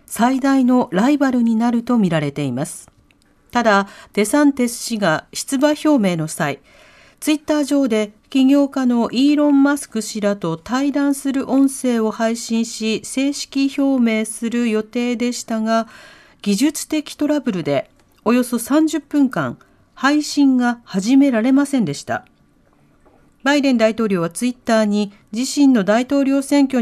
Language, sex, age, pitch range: Japanese, female, 40-59, 210-275 Hz